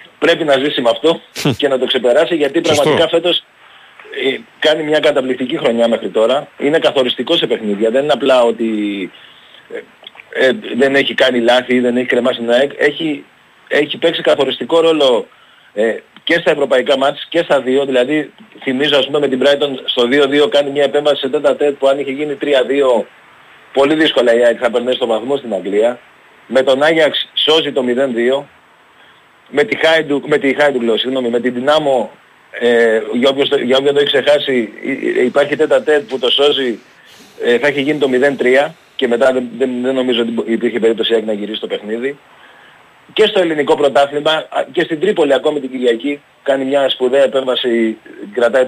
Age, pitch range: 30-49, 120-145 Hz